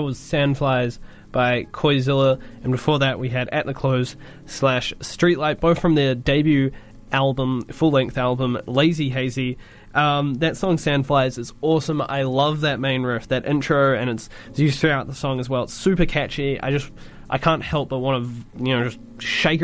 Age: 20-39